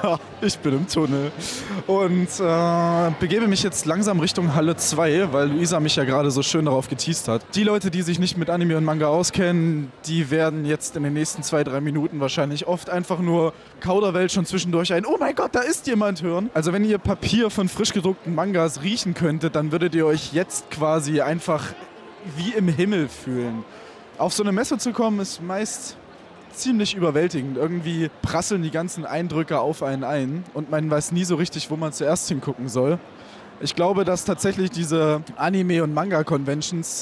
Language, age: German, 20-39